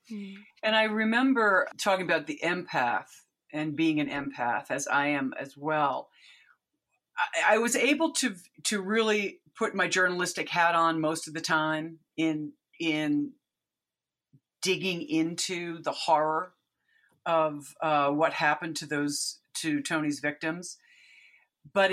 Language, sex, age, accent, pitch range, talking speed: English, female, 50-69, American, 155-205 Hz, 130 wpm